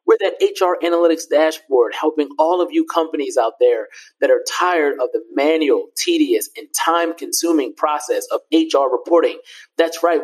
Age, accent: 30-49, American